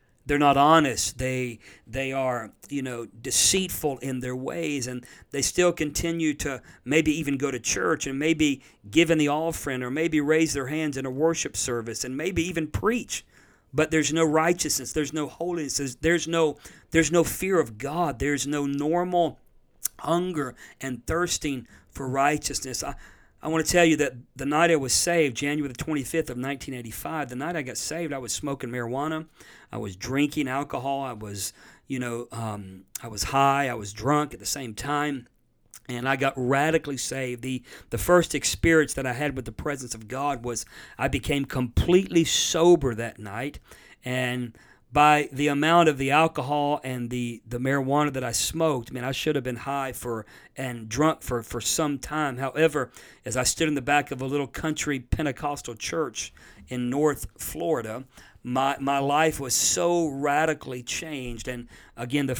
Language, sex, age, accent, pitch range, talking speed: English, male, 50-69, American, 125-155 Hz, 180 wpm